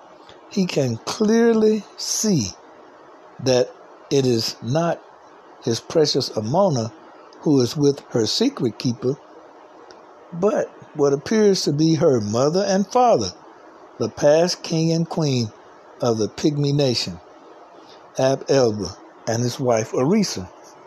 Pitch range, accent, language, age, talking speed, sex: 120-170 Hz, American, English, 60-79, 115 wpm, male